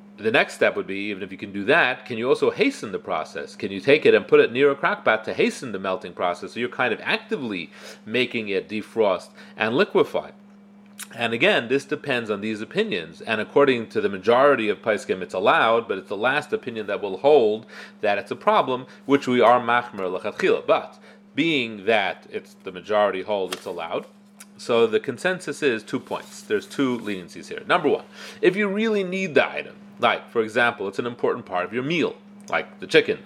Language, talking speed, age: English, 210 wpm, 30-49